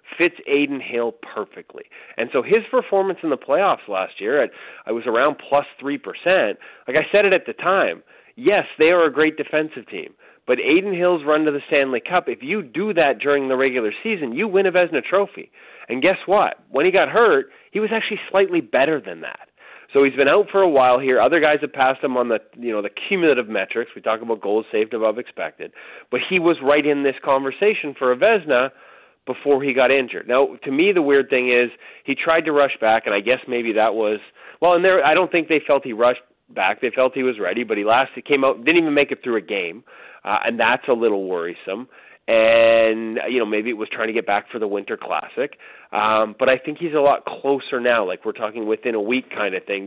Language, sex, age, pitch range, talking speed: English, male, 30-49, 125-190 Hz, 230 wpm